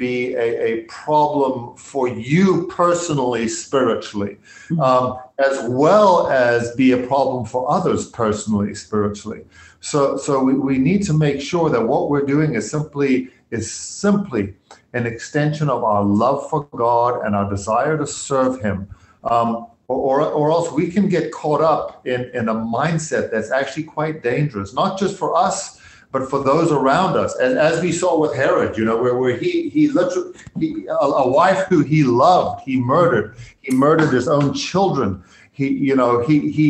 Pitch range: 120-155 Hz